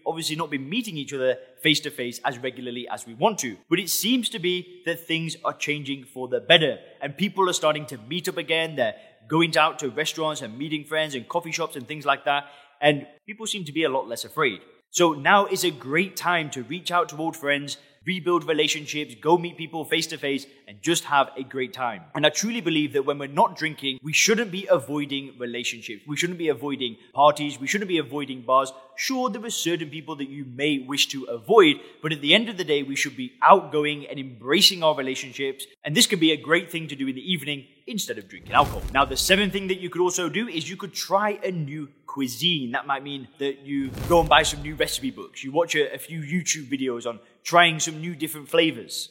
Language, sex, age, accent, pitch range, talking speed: English, male, 20-39, British, 140-175 Hz, 230 wpm